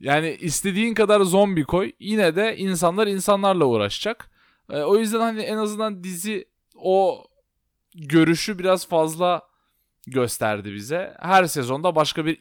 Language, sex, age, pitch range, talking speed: Turkish, male, 20-39, 155-200 Hz, 130 wpm